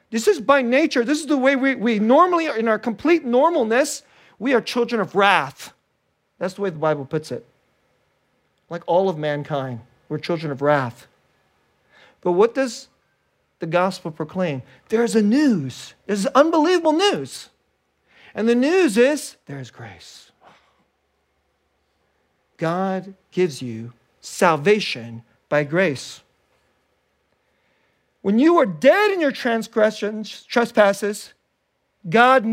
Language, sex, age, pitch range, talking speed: English, male, 40-59, 170-260 Hz, 130 wpm